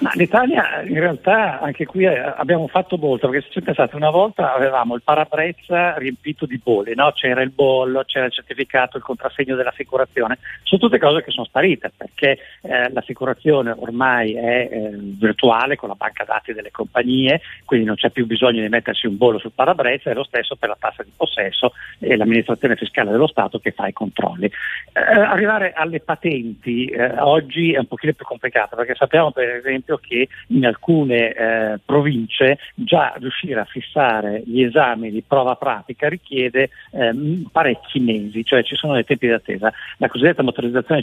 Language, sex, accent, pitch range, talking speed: Italian, male, native, 120-145 Hz, 175 wpm